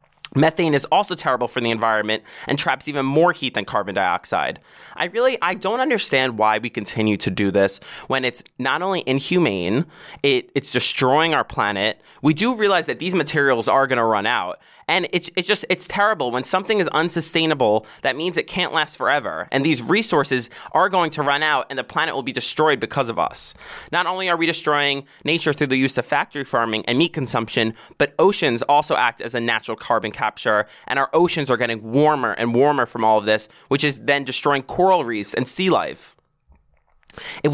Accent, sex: American, male